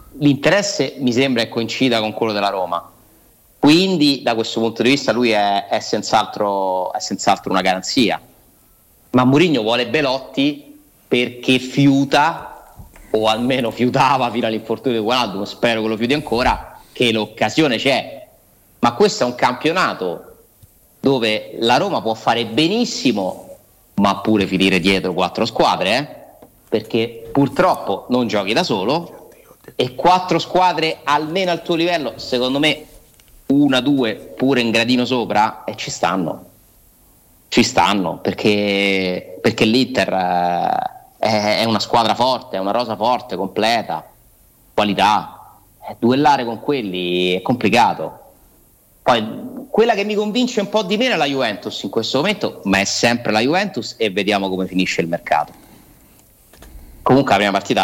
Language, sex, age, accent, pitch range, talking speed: Italian, male, 30-49, native, 105-145 Hz, 140 wpm